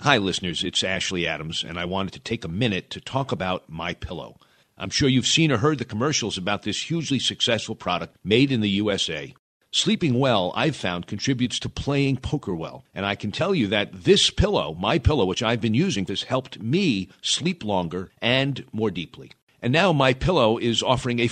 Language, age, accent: English, 50-69, American